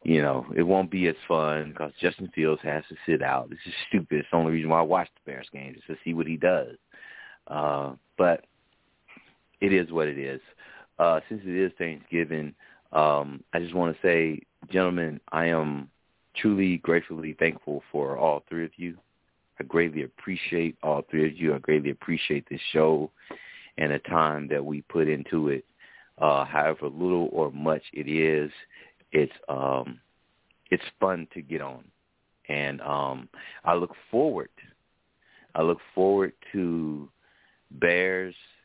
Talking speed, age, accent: 165 wpm, 30-49, American